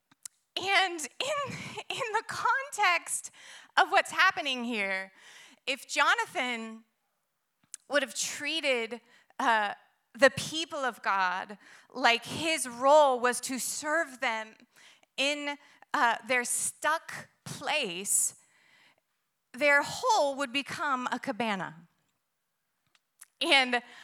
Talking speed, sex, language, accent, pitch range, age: 95 wpm, female, English, American, 225-285 Hz, 30-49